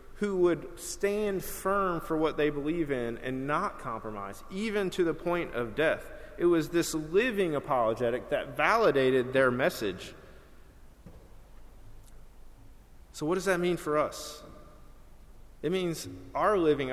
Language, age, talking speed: English, 30-49, 135 wpm